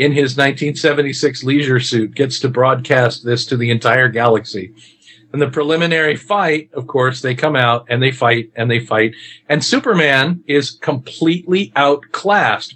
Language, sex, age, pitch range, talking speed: English, male, 50-69, 120-155 Hz, 155 wpm